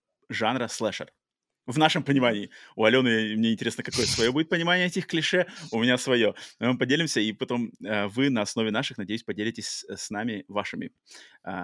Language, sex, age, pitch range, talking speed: Russian, male, 30-49, 105-135 Hz, 170 wpm